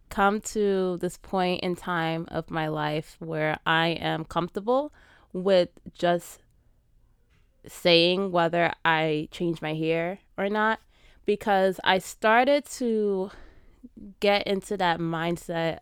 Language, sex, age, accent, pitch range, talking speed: English, female, 20-39, American, 165-195 Hz, 120 wpm